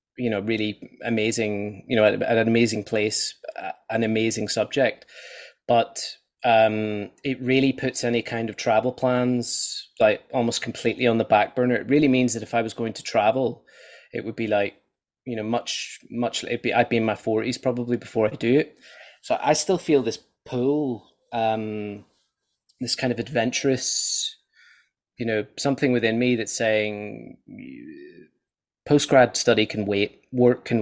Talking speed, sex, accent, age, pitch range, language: 170 wpm, male, British, 20-39, 110-125 Hz, English